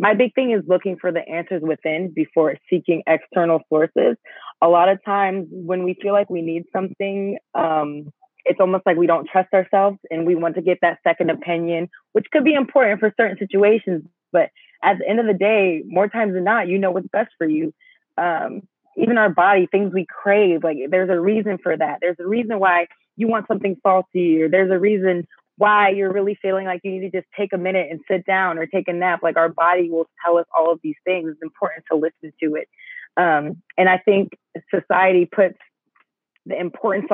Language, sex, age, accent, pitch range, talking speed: English, female, 20-39, American, 170-200 Hz, 215 wpm